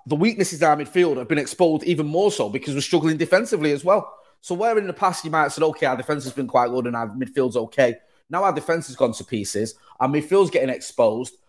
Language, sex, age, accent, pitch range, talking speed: English, male, 30-49, British, 125-165 Hz, 250 wpm